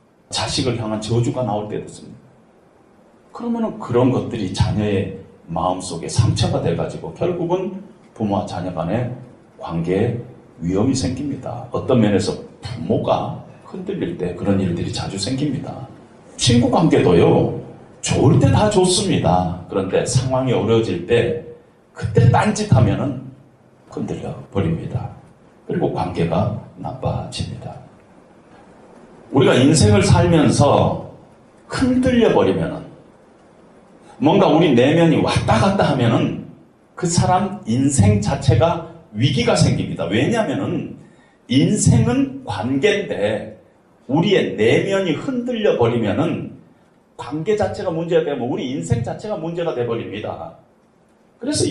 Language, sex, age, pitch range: Korean, male, 40-59, 110-175 Hz